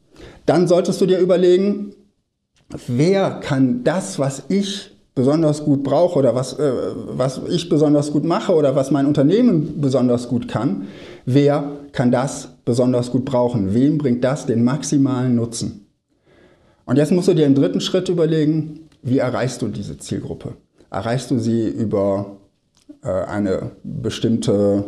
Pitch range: 120-160 Hz